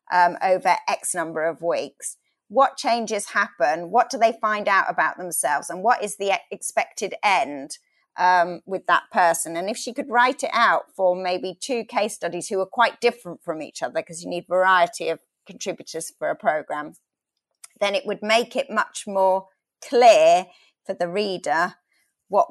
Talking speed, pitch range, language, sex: 175 wpm, 180-235 Hz, English, female